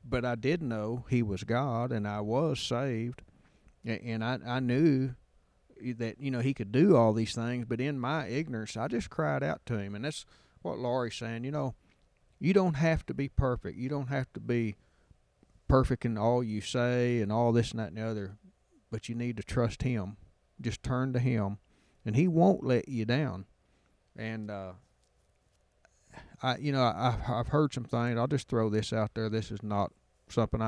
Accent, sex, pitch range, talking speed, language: American, male, 105-125 Hz, 195 wpm, English